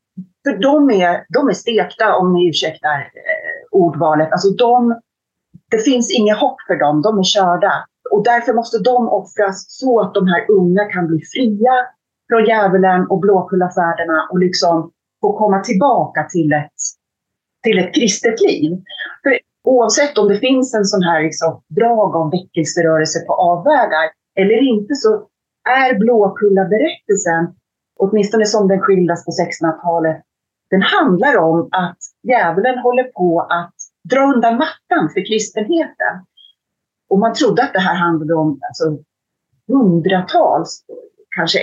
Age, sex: 30-49, female